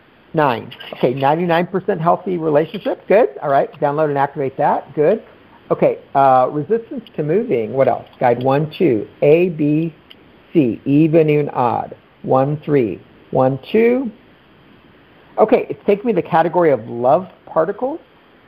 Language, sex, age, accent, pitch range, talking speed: English, male, 50-69, American, 150-255 Hz, 140 wpm